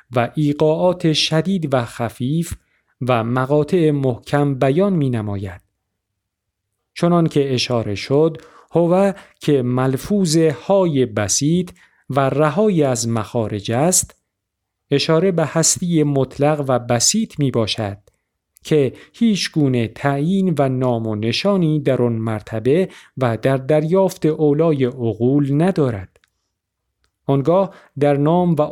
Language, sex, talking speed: Persian, male, 105 wpm